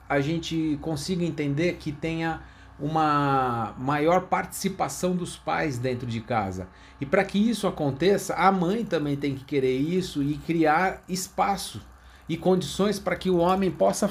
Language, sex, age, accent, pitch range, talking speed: Portuguese, male, 40-59, Brazilian, 135-180 Hz, 155 wpm